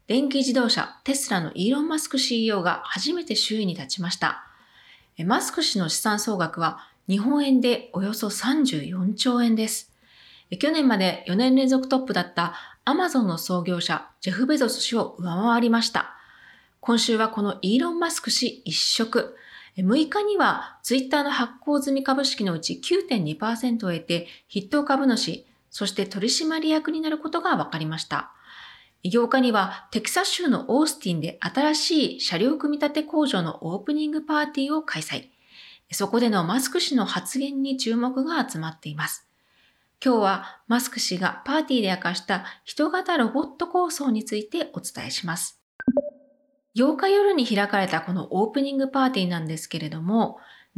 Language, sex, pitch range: Japanese, female, 195-285 Hz